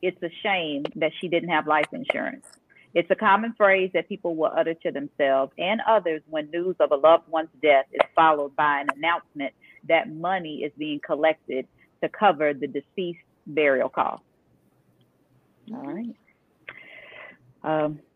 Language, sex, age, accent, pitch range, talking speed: English, female, 40-59, American, 155-200 Hz, 155 wpm